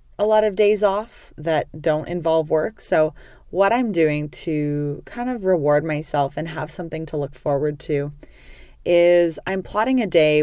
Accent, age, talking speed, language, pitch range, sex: American, 20-39, 175 wpm, English, 145-185 Hz, female